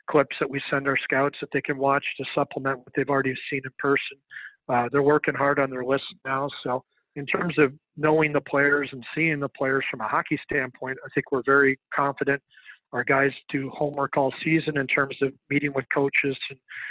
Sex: male